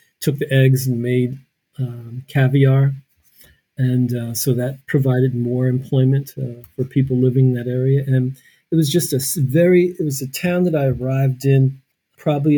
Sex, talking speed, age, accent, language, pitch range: male, 170 wpm, 40-59, American, English, 125-140 Hz